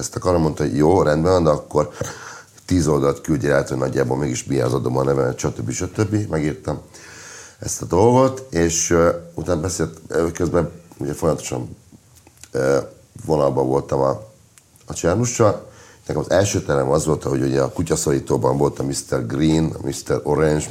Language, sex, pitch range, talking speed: Hungarian, male, 70-95 Hz, 165 wpm